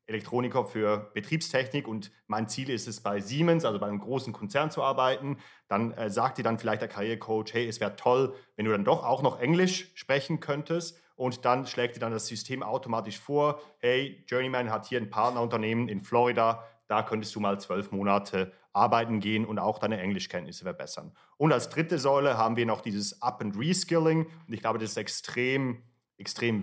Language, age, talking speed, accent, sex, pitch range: German, 40-59, 190 wpm, German, male, 110-135 Hz